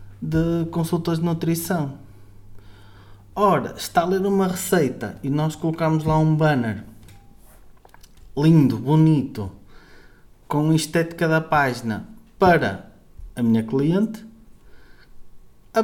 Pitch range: 120-160 Hz